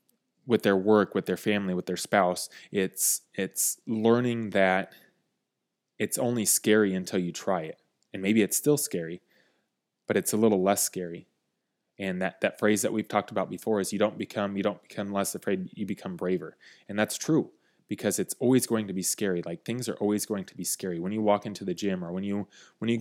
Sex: male